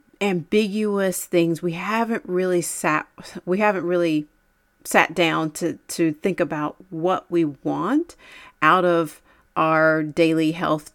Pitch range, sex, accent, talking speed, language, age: 160-200 Hz, female, American, 125 wpm, English, 40-59